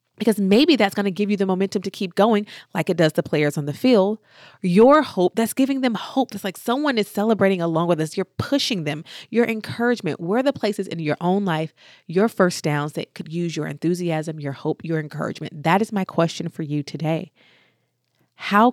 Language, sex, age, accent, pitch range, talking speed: English, female, 30-49, American, 165-210 Hz, 210 wpm